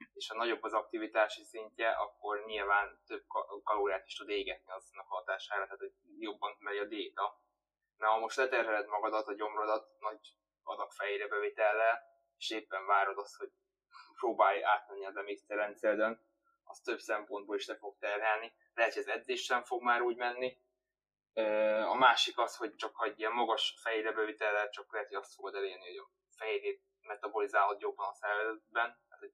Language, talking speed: Hungarian, 170 wpm